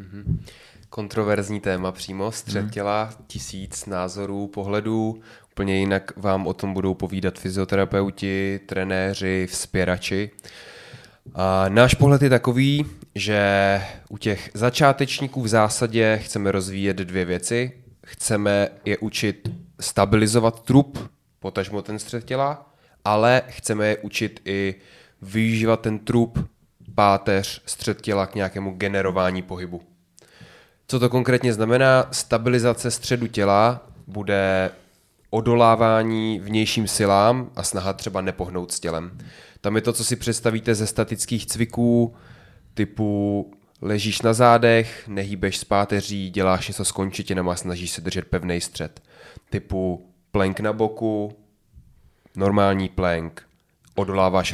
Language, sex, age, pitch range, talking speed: Czech, male, 20-39, 95-115 Hz, 115 wpm